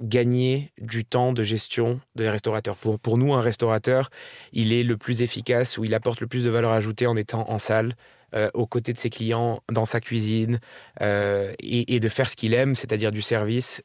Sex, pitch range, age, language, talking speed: male, 110-125 Hz, 20-39, French, 210 wpm